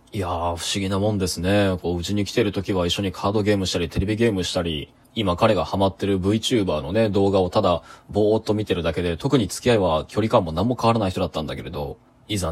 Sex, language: male, Japanese